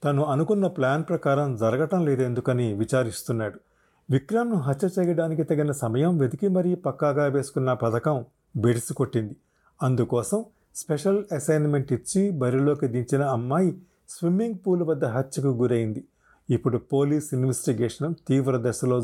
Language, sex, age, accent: Telugu, male, 40-59, native